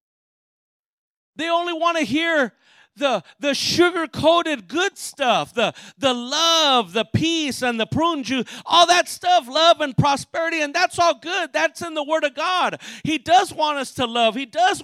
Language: English